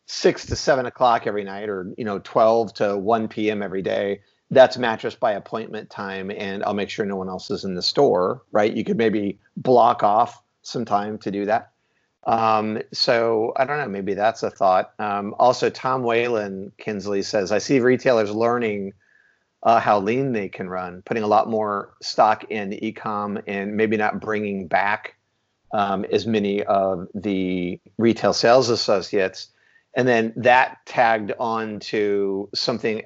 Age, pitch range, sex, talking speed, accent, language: 40-59, 95-110 Hz, male, 170 wpm, American, English